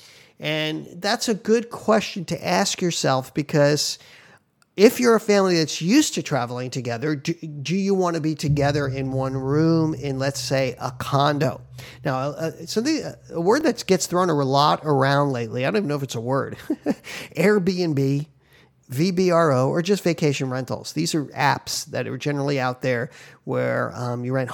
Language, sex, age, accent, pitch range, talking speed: English, male, 40-59, American, 135-190 Hz, 180 wpm